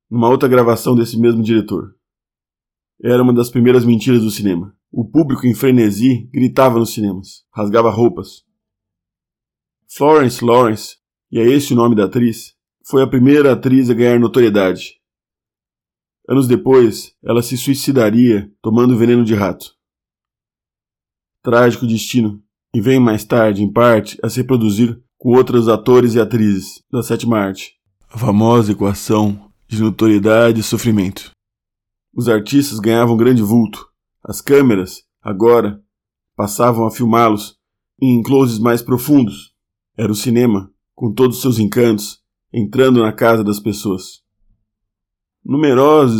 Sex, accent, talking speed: male, Brazilian, 130 wpm